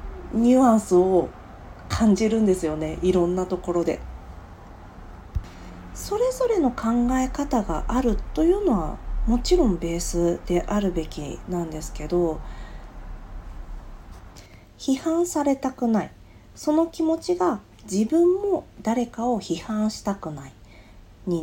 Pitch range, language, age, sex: 155-260 Hz, Japanese, 40-59, female